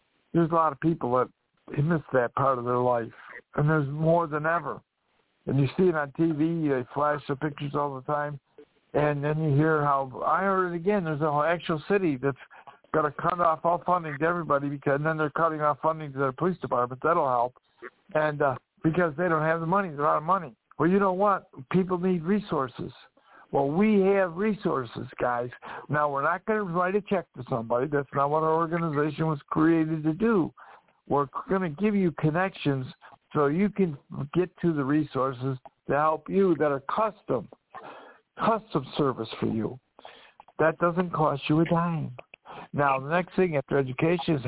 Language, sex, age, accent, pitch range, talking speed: English, male, 60-79, American, 145-180 Hz, 200 wpm